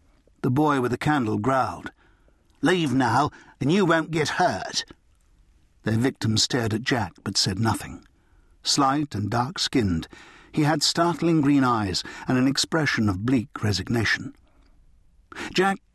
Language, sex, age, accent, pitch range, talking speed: English, male, 60-79, British, 105-160 Hz, 140 wpm